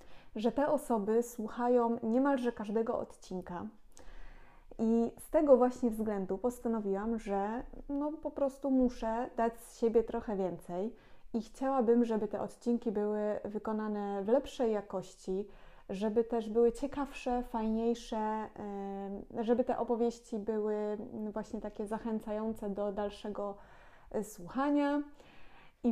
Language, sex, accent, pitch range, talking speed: Polish, female, native, 205-240 Hz, 110 wpm